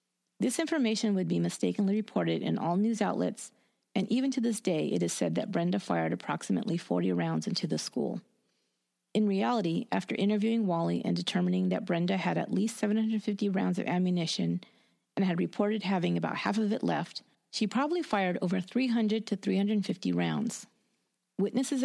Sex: female